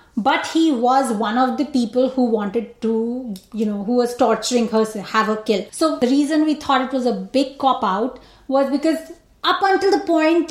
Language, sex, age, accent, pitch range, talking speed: English, female, 20-39, Indian, 245-305 Hz, 200 wpm